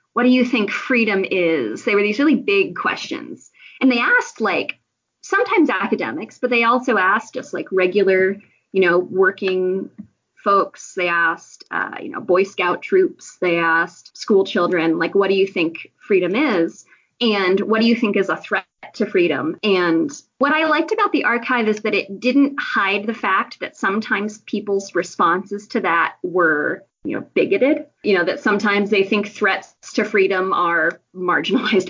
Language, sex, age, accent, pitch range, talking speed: English, female, 20-39, American, 190-260 Hz, 175 wpm